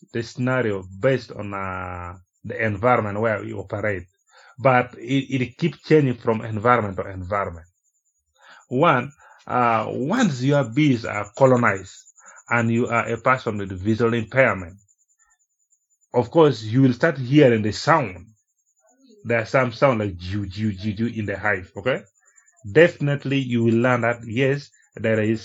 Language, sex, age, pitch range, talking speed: English, male, 30-49, 110-135 Hz, 145 wpm